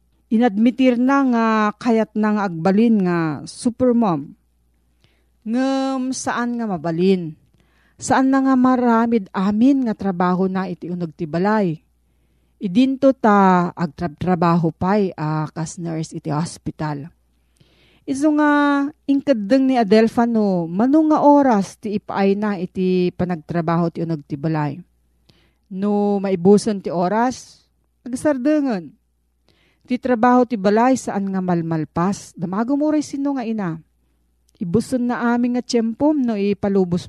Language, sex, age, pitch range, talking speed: Filipino, female, 40-59, 170-235 Hz, 120 wpm